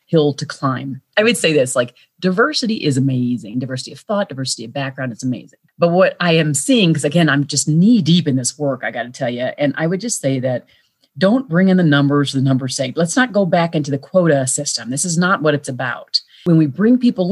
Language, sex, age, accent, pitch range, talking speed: English, female, 30-49, American, 135-175 Hz, 245 wpm